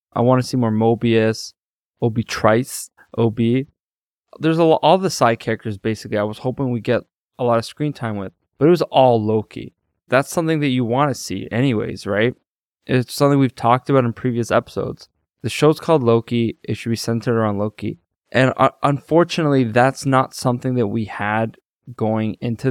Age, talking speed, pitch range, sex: 20-39, 180 wpm, 110-135 Hz, male